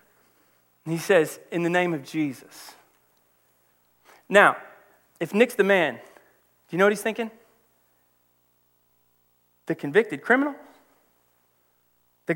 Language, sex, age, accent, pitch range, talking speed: English, male, 30-49, American, 130-195 Hz, 105 wpm